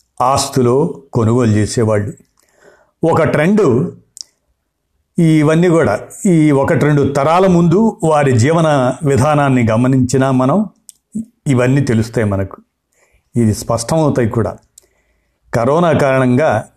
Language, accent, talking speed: Telugu, native, 90 wpm